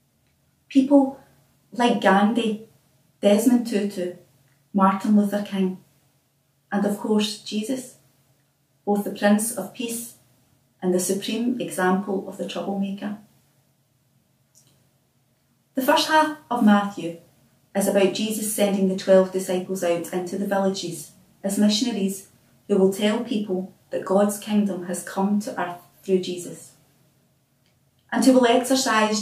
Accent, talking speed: British, 120 wpm